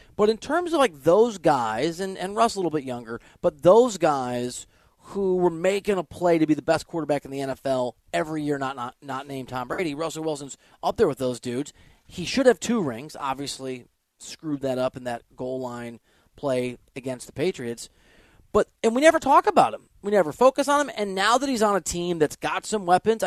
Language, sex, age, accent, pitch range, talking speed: English, male, 30-49, American, 135-200 Hz, 220 wpm